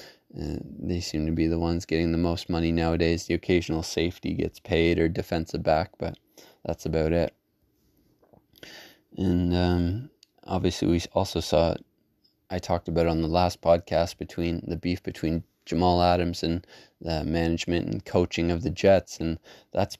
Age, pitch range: 20-39, 85-90 Hz